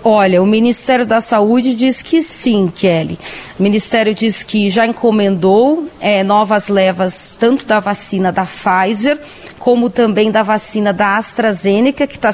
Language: Portuguese